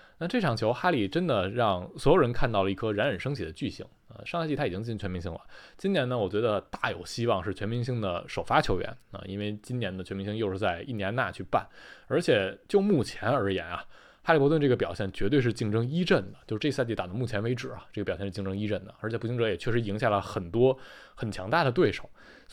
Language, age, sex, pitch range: Chinese, 20-39, male, 100-140 Hz